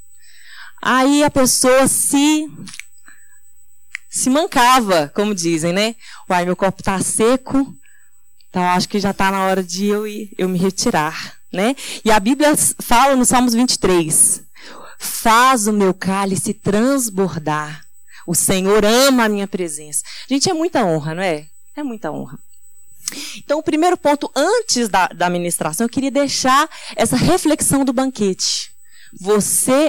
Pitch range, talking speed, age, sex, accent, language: 190-275 Hz, 145 wpm, 20-39, female, Brazilian, Portuguese